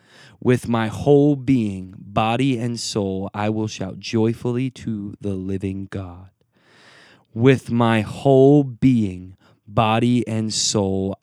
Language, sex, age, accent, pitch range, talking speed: English, male, 20-39, American, 100-120 Hz, 120 wpm